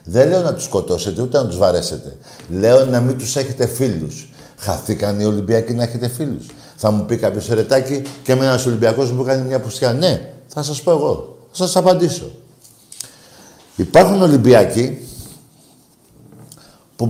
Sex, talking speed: male, 160 wpm